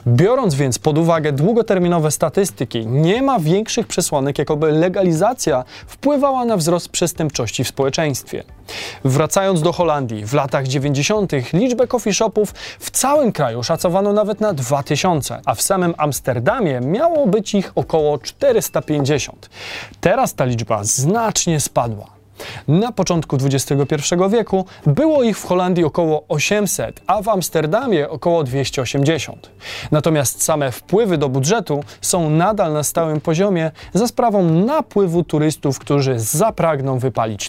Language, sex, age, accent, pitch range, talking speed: Polish, male, 20-39, native, 135-190 Hz, 130 wpm